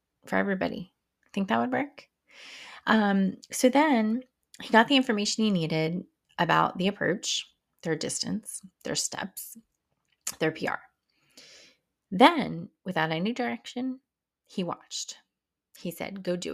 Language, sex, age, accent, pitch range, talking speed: English, female, 20-39, American, 170-225 Hz, 125 wpm